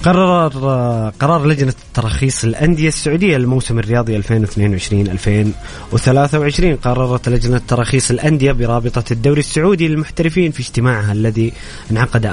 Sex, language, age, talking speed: male, Arabic, 20-39, 105 wpm